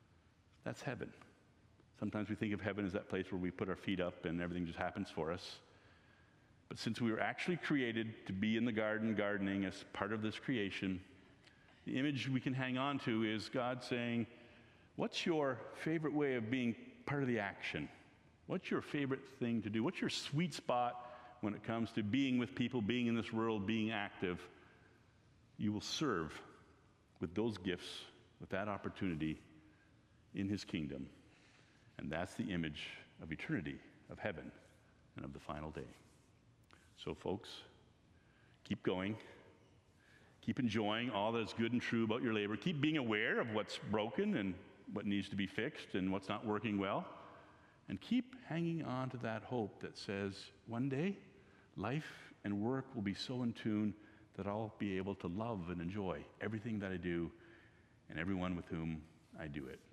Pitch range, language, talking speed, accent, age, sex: 95-120 Hz, English, 175 wpm, American, 50-69, male